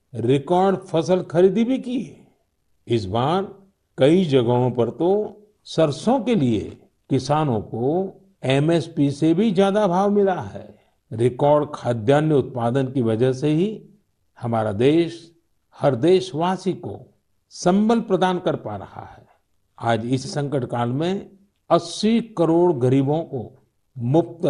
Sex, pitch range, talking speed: male, 120-185 Hz, 125 wpm